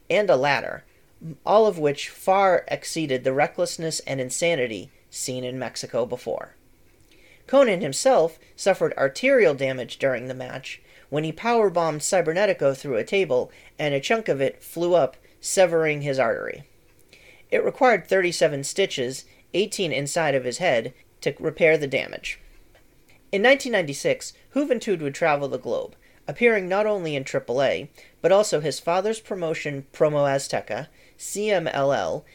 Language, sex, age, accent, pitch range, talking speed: English, male, 40-59, American, 135-195 Hz, 140 wpm